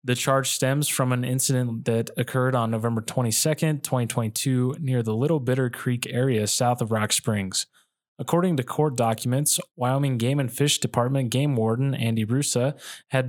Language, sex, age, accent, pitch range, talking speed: English, male, 20-39, American, 115-135 Hz, 165 wpm